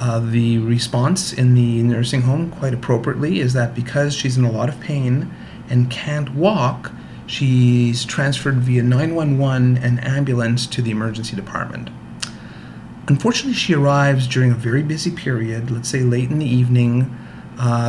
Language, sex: English, male